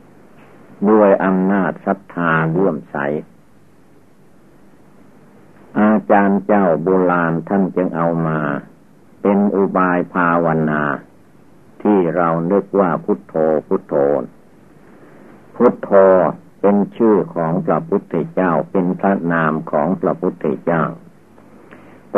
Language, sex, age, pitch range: Thai, male, 60-79, 80-100 Hz